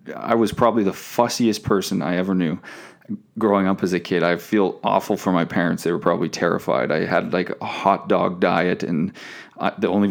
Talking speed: 200 wpm